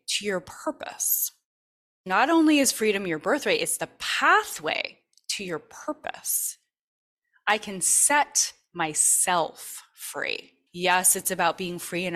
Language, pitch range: English, 165-235 Hz